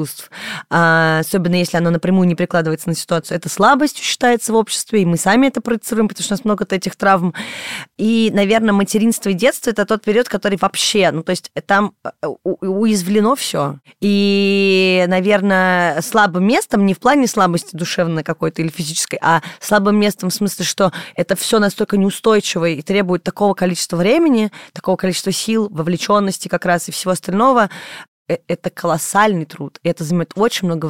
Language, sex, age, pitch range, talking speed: Russian, female, 20-39, 180-225 Hz, 170 wpm